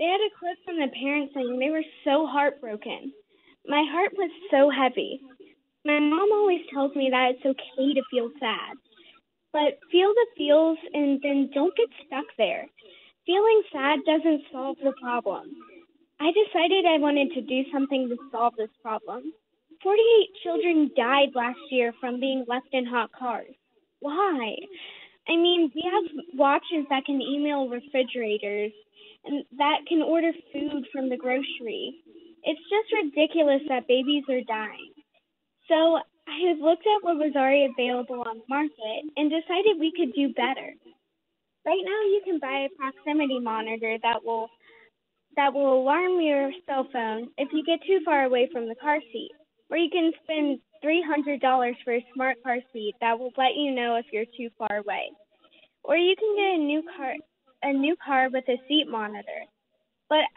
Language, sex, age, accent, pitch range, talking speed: English, female, 10-29, American, 260-330 Hz, 170 wpm